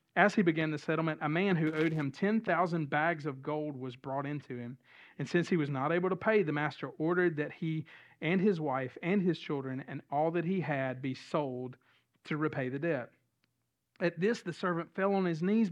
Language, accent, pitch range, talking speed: English, American, 135-175 Hz, 215 wpm